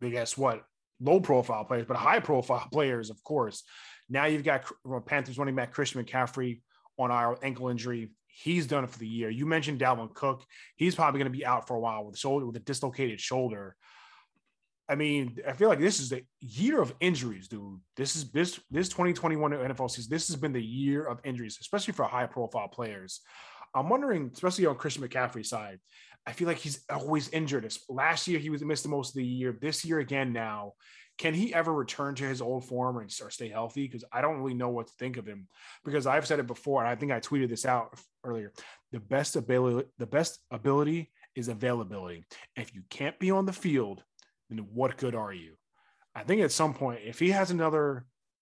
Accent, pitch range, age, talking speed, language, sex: American, 120-150 Hz, 20-39, 210 wpm, English, male